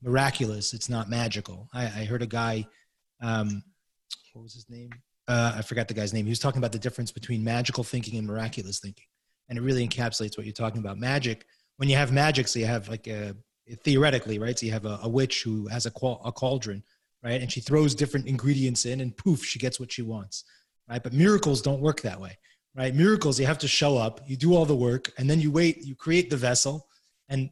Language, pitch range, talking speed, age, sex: English, 115-140 Hz, 230 wpm, 30-49, male